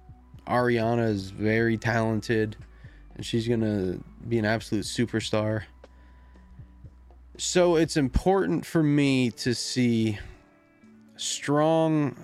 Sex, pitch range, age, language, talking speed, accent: male, 105-130 Hz, 20-39, English, 95 wpm, American